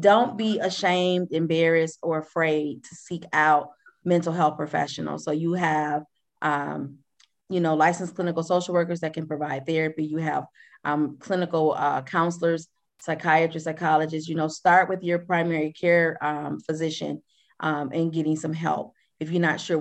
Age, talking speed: 30-49, 160 wpm